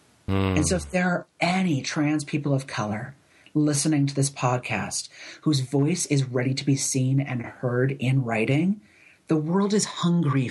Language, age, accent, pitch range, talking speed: English, 40-59, American, 135-155 Hz, 165 wpm